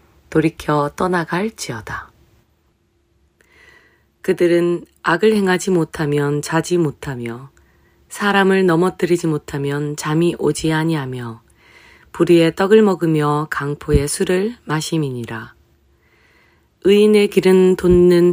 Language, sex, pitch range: Korean, female, 145-180 Hz